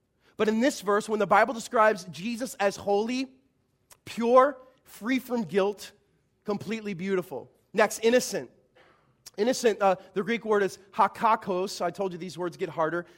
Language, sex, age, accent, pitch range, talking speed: English, male, 30-49, American, 205-270 Hz, 150 wpm